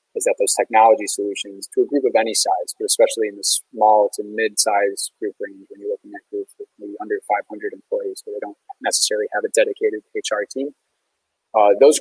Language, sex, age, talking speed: English, male, 20-39, 210 wpm